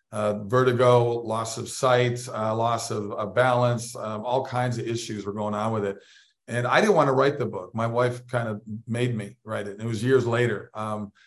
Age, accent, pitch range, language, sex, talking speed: 40-59, American, 110-130 Hz, English, male, 220 wpm